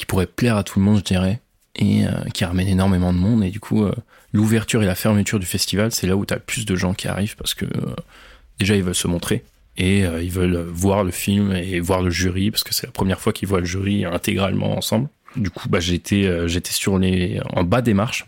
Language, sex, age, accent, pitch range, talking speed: French, male, 20-39, French, 95-110 Hz, 245 wpm